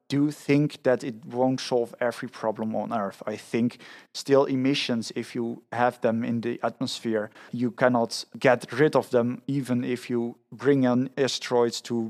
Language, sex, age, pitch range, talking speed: English, male, 30-49, 115-130 Hz, 170 wpm